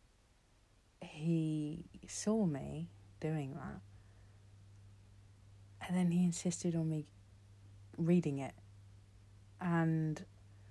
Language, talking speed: English, 80 wpm